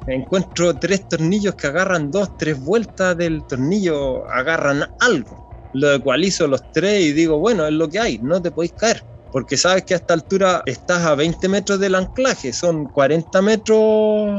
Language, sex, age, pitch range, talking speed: Spanish, male, 20-39, 145-195 Hz, 175 wpm